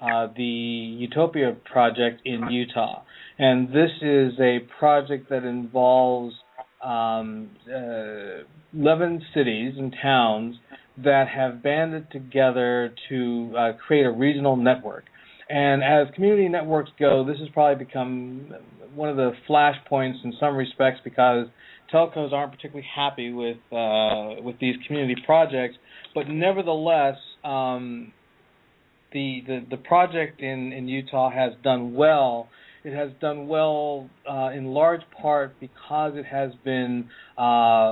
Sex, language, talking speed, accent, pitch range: male, English, 130 wpm, American, 125-145 Hz